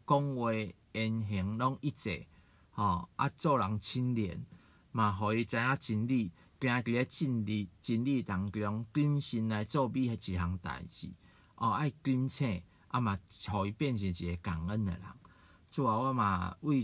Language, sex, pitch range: Chinese, male, 95-120 Hz